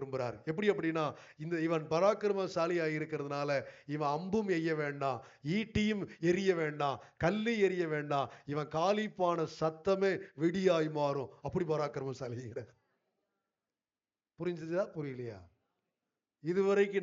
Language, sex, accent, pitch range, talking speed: Tamil, male, native, 155-210 Hz, 55 wpm